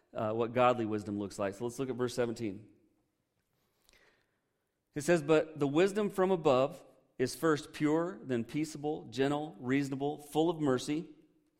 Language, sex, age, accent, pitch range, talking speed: English, male, 40-59, American, 120-155 Hz, 150 wpm